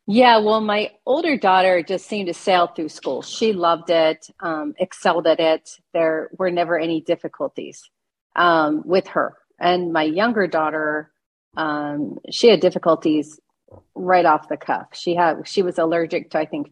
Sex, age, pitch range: female, 40-59, 160-185 Hz